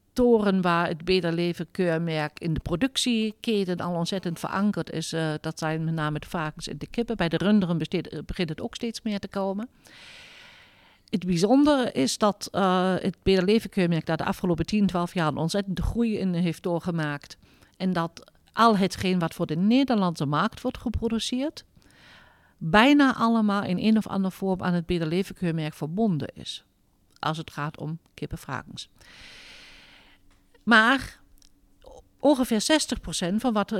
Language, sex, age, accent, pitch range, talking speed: Dutch, female, 50-69, Dutch, 165-215 Hz, 160 wpm